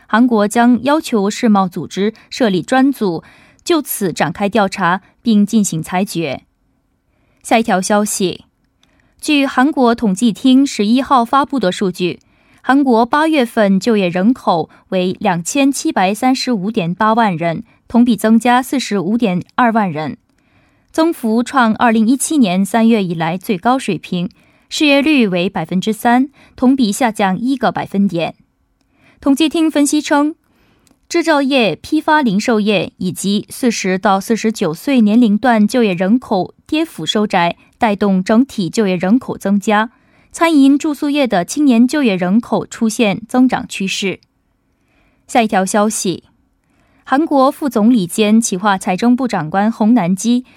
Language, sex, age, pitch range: Korean, female, 20-39, 195-255 Hz